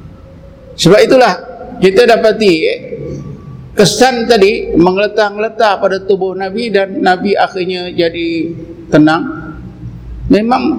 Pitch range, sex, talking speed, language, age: 155-205 Hz, male, 90 wpm, Malay, 50-69